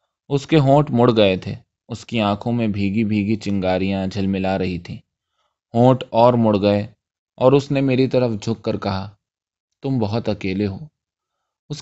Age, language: 20-39, Urdu